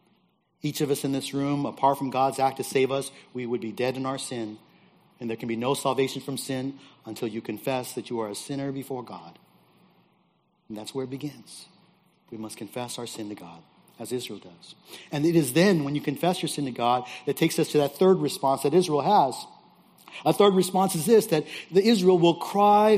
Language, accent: English, American